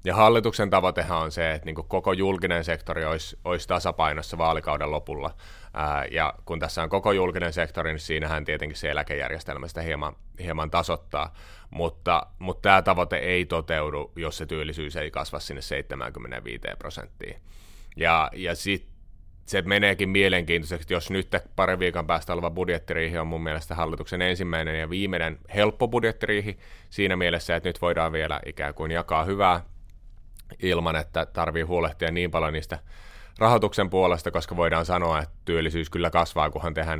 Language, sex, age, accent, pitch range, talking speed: Finnish, male, 30-49, native, 80-90 Hz, 155 wpm